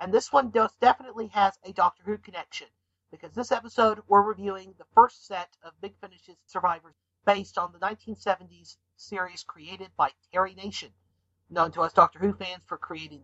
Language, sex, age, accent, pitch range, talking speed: English, male, 50-69, American, 160-210 Hz, 170 wpm